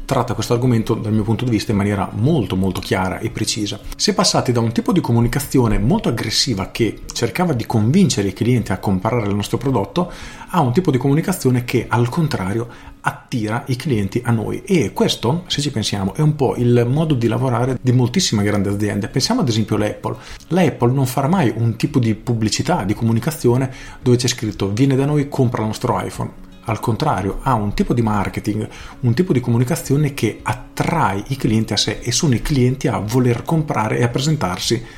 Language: Italian